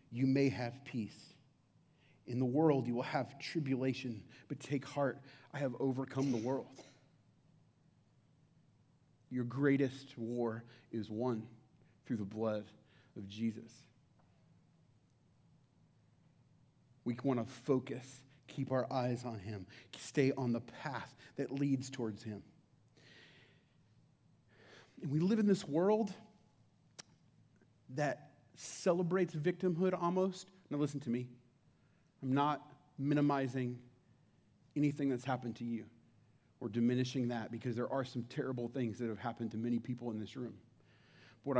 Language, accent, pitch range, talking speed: English, American, 120-145 Hz, 125 wpm